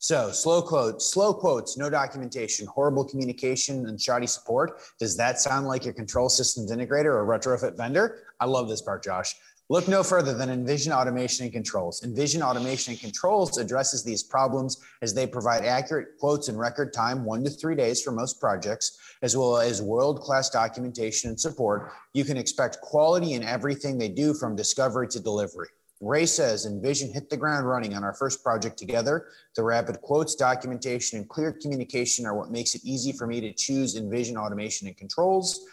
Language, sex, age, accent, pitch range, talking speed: English, male, 30-49, American, 115-145 Hz, 185 wpm